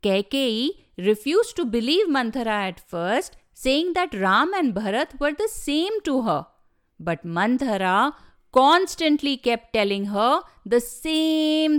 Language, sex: English, female